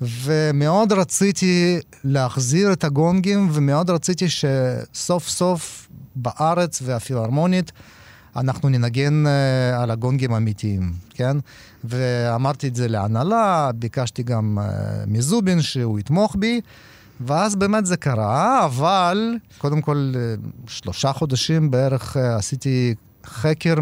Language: Hebrew